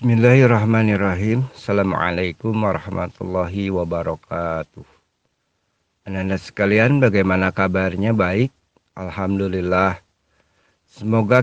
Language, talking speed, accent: Indonesian, 60 wpm, native